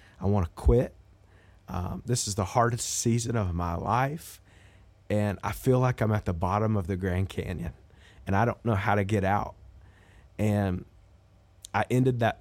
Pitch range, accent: 95-110 Hz, American